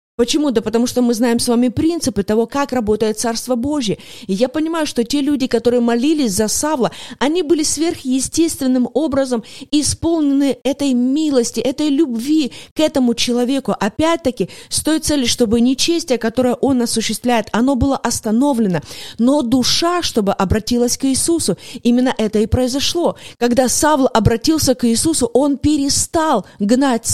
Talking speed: 145 wpm